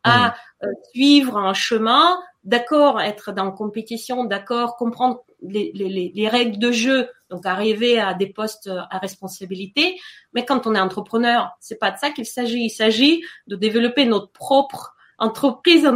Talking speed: 165 wpm